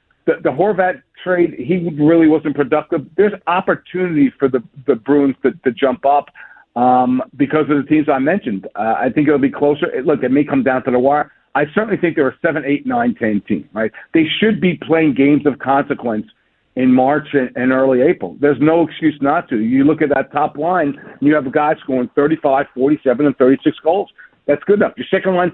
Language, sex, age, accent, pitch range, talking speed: English, male, 50-69, American, 135-165 Hz, 215 wpm